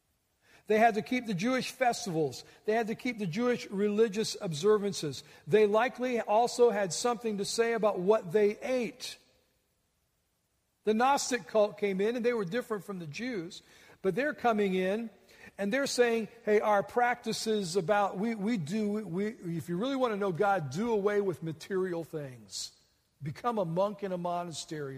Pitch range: 185-235 Hz